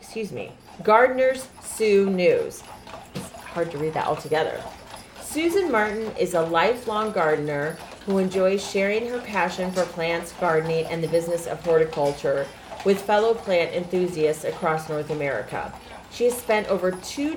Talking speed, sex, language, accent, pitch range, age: 150 wpm, female, English, American, 160-215 Hz, 30-49